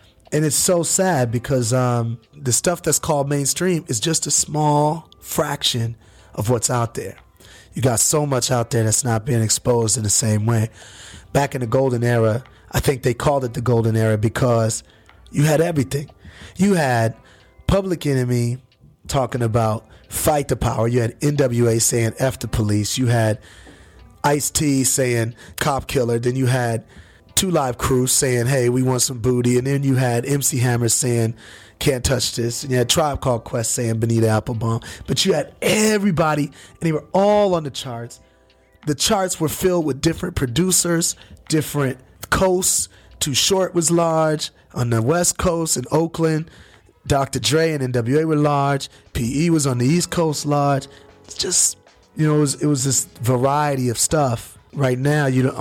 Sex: male